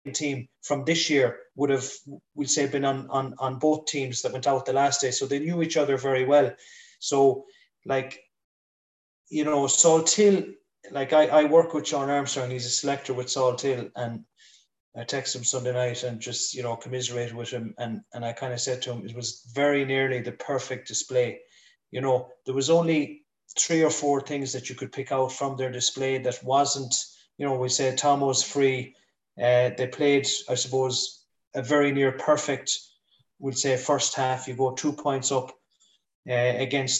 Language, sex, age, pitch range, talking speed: English, male, 30-49, 125-145 Hz, 195 wpm